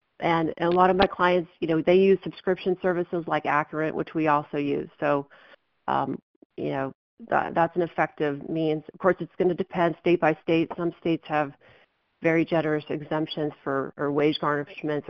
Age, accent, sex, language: 40-59, American, female, English